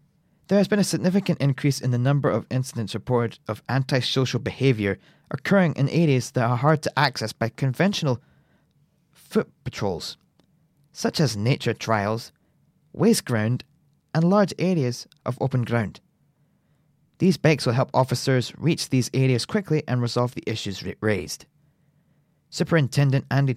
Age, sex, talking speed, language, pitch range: 30-49, male, 140 wpm, English, 120-155 Hz